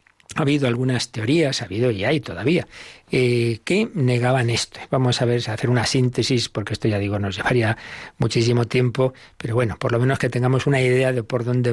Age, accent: 40-59, Spanish